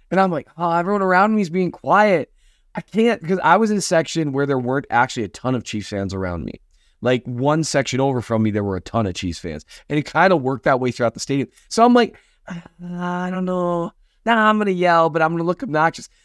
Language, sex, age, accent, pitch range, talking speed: English, male, 20-39, American, 115-180 Hz, 260 wpm